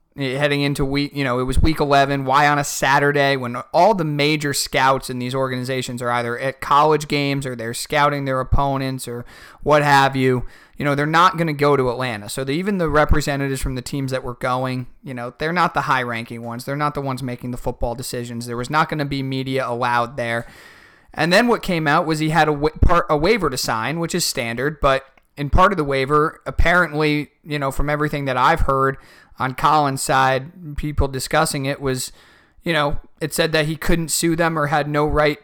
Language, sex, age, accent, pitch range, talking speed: English, male, 30-49, American, 130-150 Hz, 215 wpm